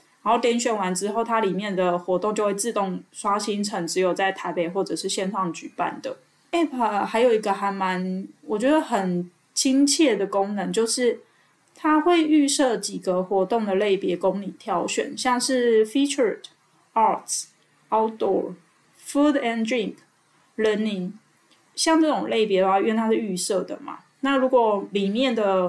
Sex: female